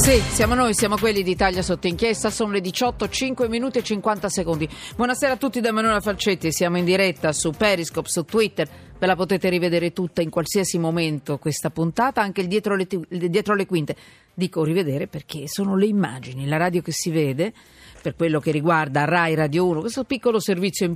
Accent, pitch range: native, 160-220 Hz